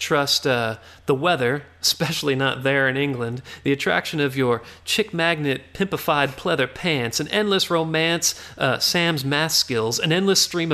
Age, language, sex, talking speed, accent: 40-59, English, male, 155 wpm, American